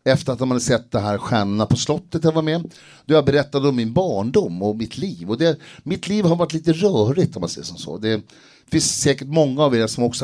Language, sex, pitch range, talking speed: Swedish, male, 100-130 Hz, 250 wpm